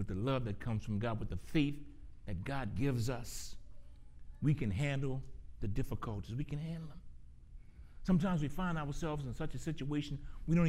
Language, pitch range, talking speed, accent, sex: English, 125-210 Hz, 185 wpm, American, male